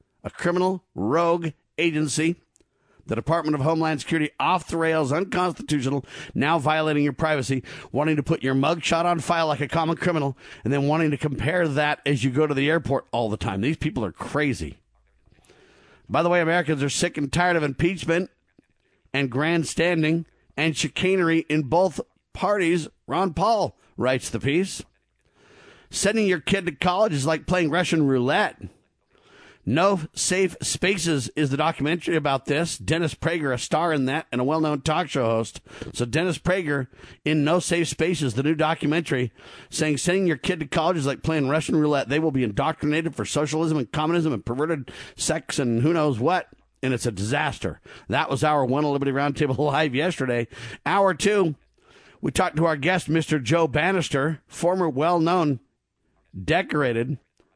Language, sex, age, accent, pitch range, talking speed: English, male, 50-69, American, 140-170 Hz, 165 wpm